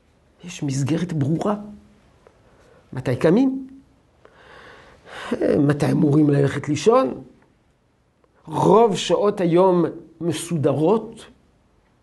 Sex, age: male, 60-79